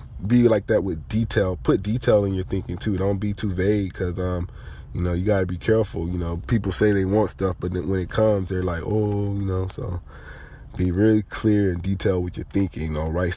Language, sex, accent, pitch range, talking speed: English, male, American, 90-105 Hz, 240 wpm